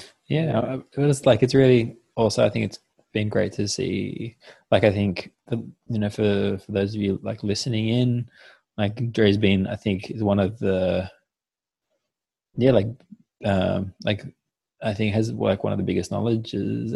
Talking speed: 175 wpm